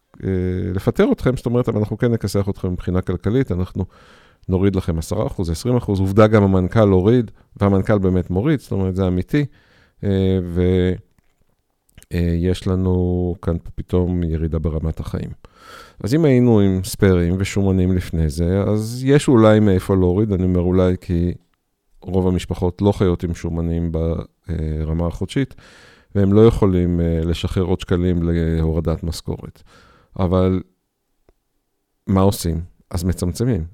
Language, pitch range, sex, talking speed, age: Hebrew, 90-105 Hz, male, 130 wpm, 50-69